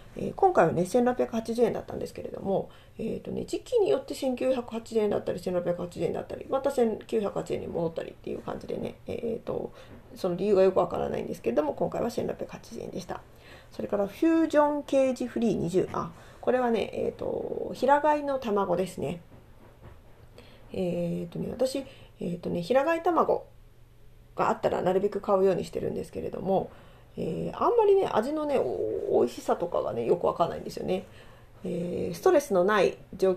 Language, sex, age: Japanese, female, 40-59